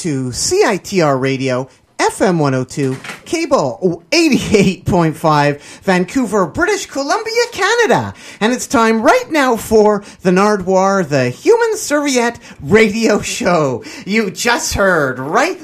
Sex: male